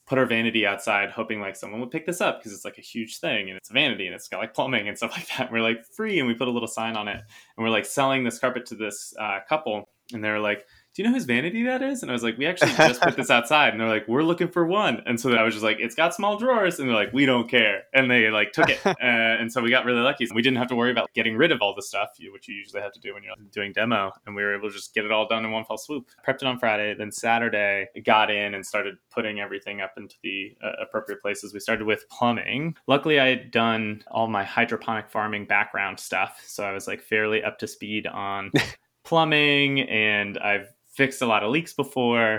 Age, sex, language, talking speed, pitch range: 20-39, male, English, 275 wpm, 105-130 Hz